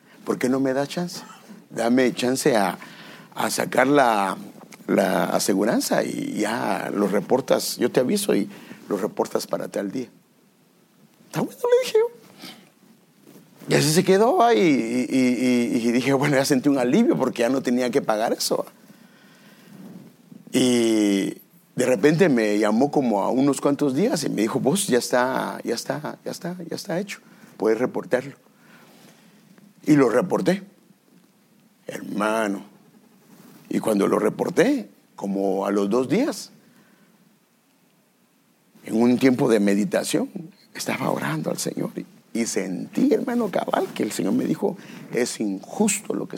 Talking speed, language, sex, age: 145 wpm, English, male, 50-69